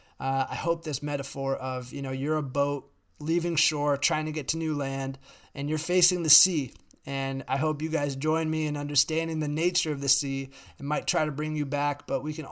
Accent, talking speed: American, 230 wpm